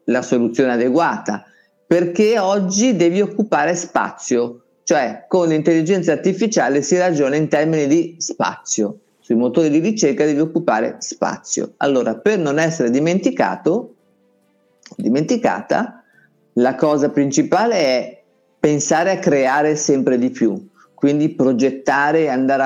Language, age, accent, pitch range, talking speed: Italian, 50-69, native, 125-170 Hz, 120 wpm